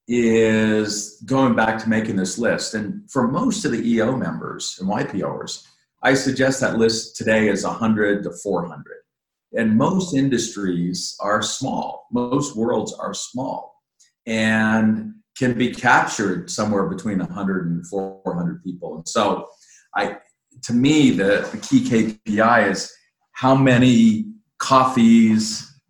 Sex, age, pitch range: male, 50-69, 95-125 Hz